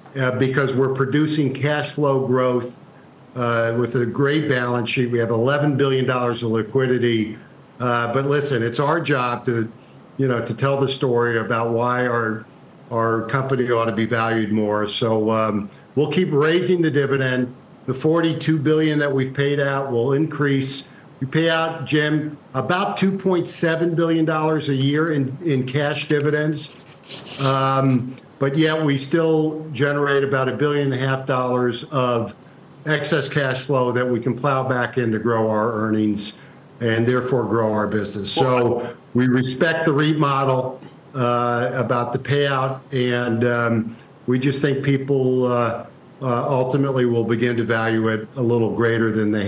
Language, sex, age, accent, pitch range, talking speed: English, male, 50-69, American, 120-145 Hz, 160 wpm